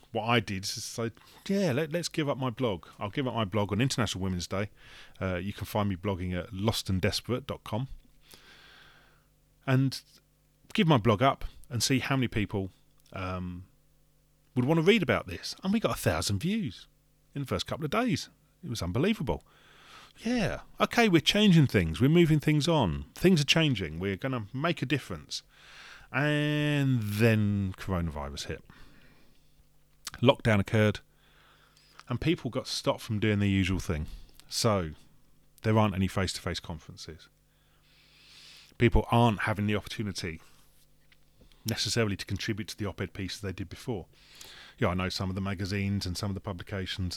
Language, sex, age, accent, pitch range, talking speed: English, male, 30-49, British, 95-135 Hz, 160 wpm